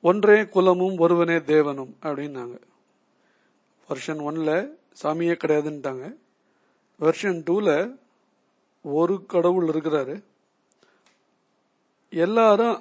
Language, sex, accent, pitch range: Tamil, male, native, 155-185 Hz